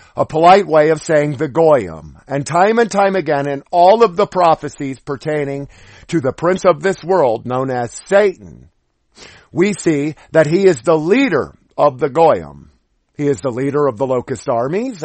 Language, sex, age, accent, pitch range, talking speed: English, male, 50-69, American, 130-170 Hz, 180 wpm